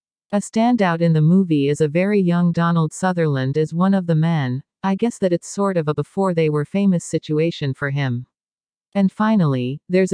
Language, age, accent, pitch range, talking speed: French, 40-59, American, 150-195 Hz, 180 wpm